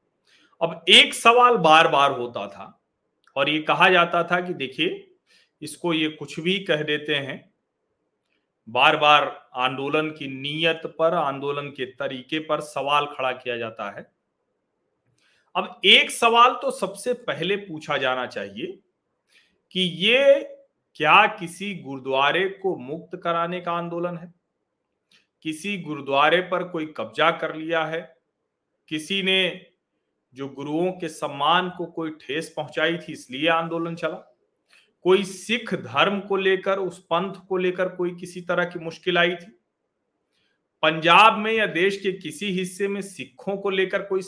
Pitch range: 155-205 Hz